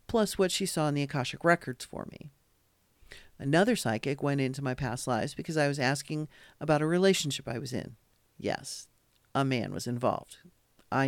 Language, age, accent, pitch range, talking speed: English, 40-59, American, 135-180 Hz, 180 wpm